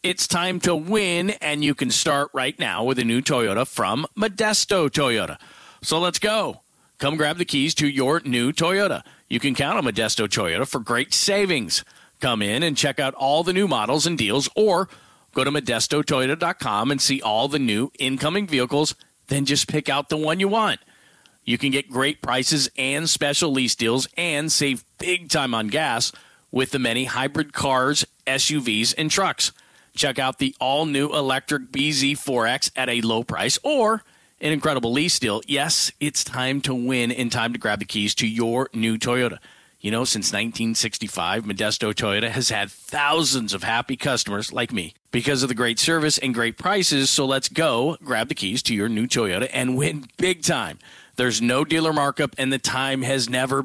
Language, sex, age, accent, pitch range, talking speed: English, male, 40-59, American, 125-155 Hz, 185 wpm